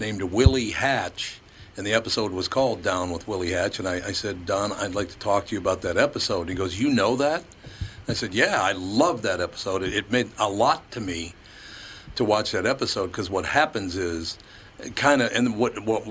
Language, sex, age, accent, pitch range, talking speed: English, male, 60-79, American, 95-120 Hz, 215 wpm